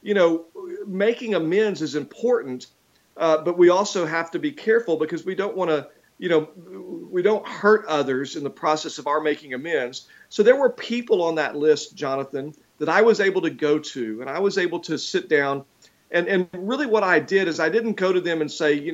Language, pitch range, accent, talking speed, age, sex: English, 145-195 Hz, American, 220 wpm, 40-59, male